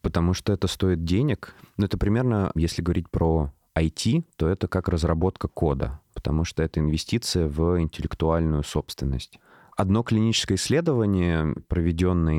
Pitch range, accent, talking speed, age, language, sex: 75-90 Hz, native, 135 wpm, 20-39, Russian, male